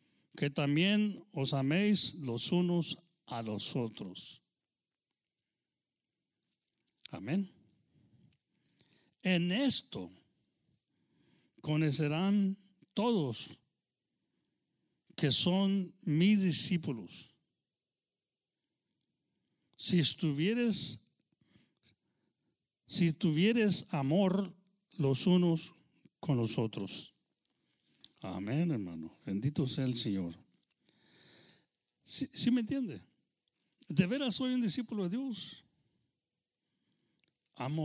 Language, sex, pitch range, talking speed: English, male, 135-190 Hz, 70 wpm